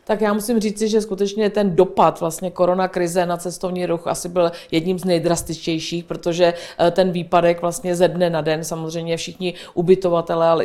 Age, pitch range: 50-69, 160-180 Hz